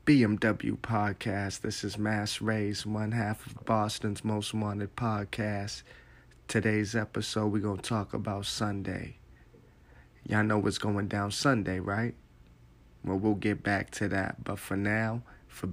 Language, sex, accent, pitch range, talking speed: English, male, American, 100-110 Hz, 140 wpm